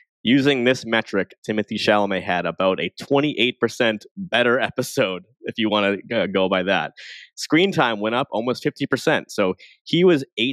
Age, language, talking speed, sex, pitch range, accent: 20-39, English, 160 wpm, male, 100-125 Hz, American